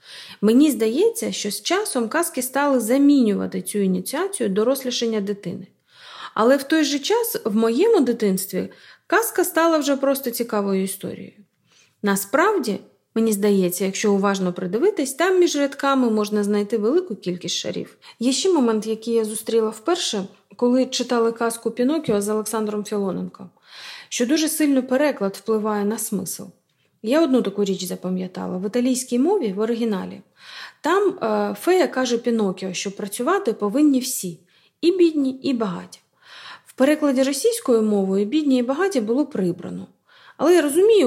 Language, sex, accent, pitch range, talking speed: Ukrainian, female, native, 205-290 Hz, 140 wpm